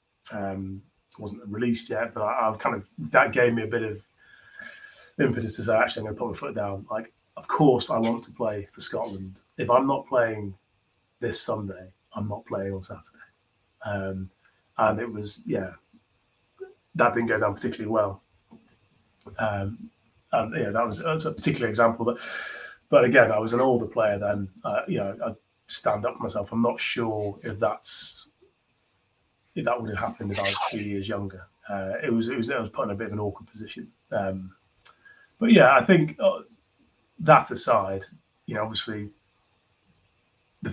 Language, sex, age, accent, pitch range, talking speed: English, male, 30-49, British, 100-120 Hz, 185 wpm